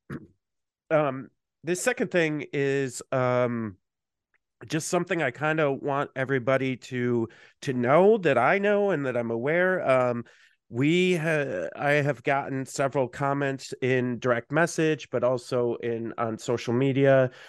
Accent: American